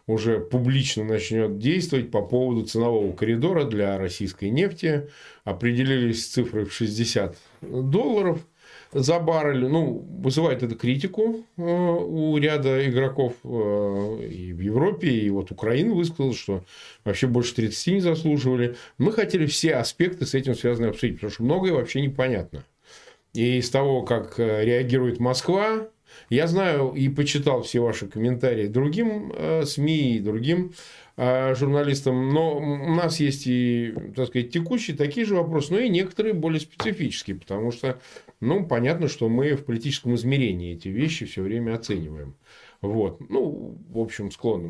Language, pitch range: Russian, 115-160 Hz